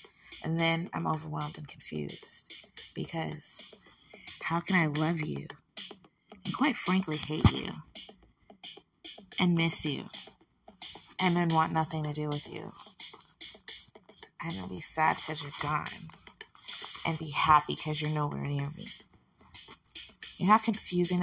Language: English